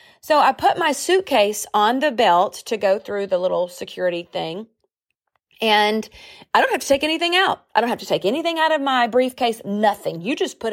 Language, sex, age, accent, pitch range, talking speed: English, female, 30-49, American, 185-265 Hz, 205 wpm